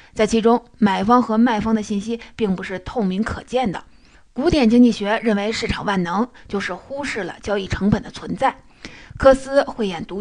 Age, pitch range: 30-49, 195-240 Hz